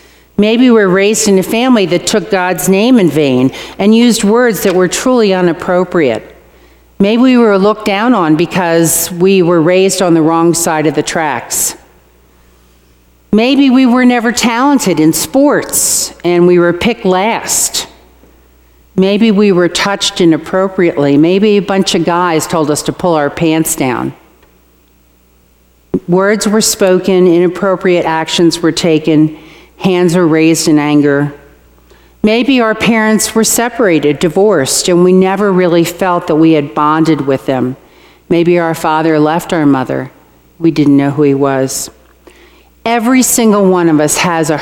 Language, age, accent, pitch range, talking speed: English, 50-69, American, 145-200 Hz, 155 wpm